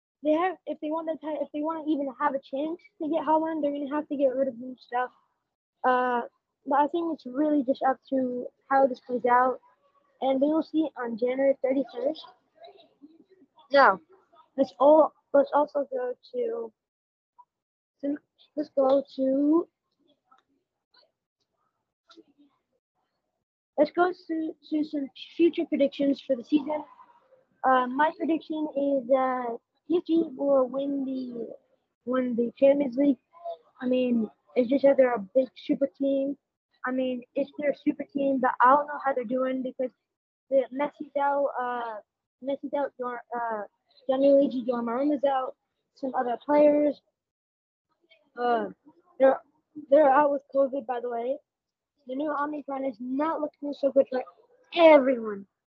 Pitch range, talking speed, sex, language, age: 260-300 Hz, 150 wpm, female, English, 20-39